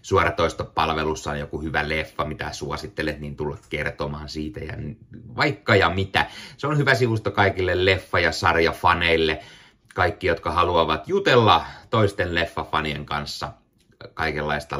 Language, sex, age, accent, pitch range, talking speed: Finnish, male, 30-49, native, 80-105 Hz, 125 wpm